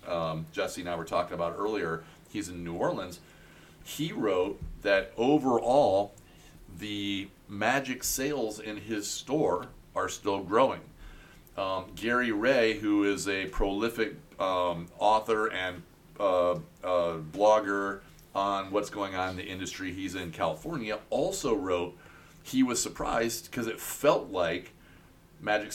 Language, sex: English, male